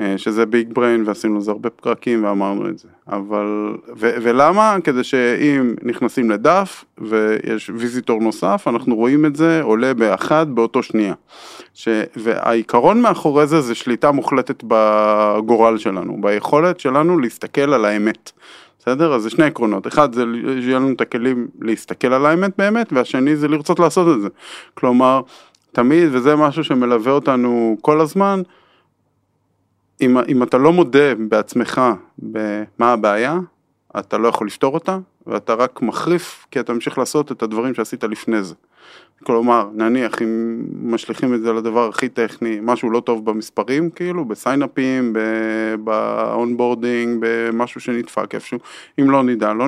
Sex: male